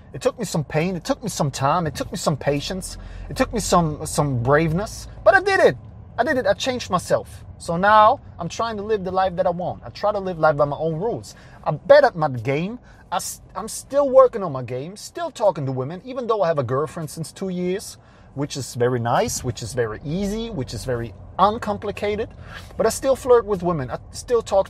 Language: English